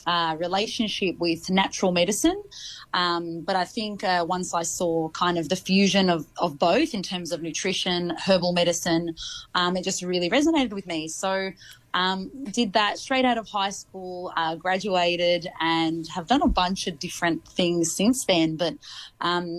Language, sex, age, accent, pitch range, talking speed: English, female, 20-39, Australian, 170-200 Hz, 170 wpm